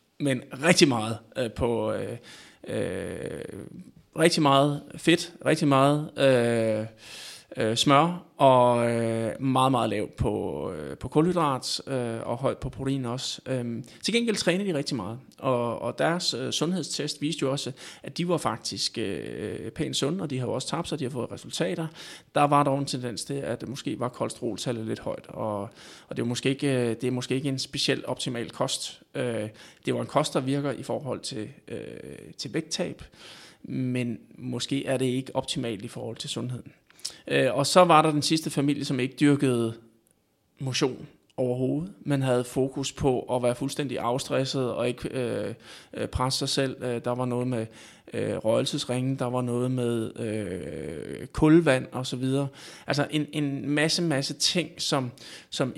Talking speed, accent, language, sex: 155 wpm, native, Danish, male